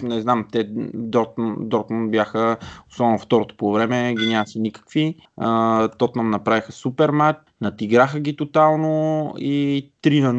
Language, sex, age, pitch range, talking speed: Bulgarian, male, 20-39, 105-130 Hz, 135 wpm